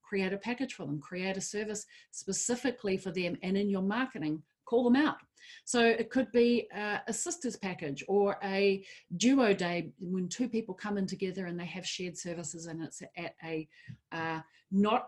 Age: 40-59